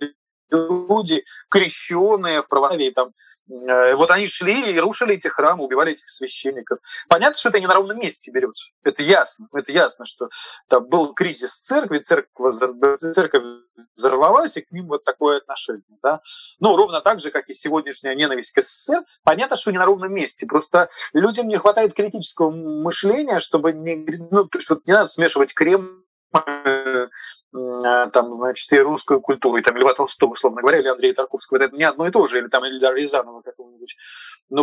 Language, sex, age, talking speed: Russian, male, 30-49, 170 wpm